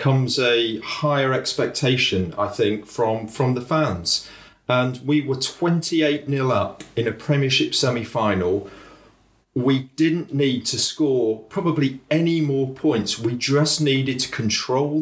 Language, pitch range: English, 115-145 Hz